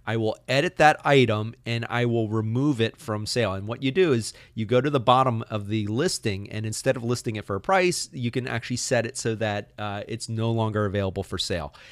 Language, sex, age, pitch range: English, male, 30-49, 110-140 Hz